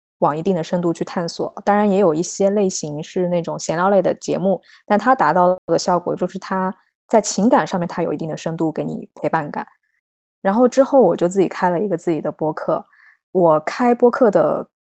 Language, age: Chinese, 20-39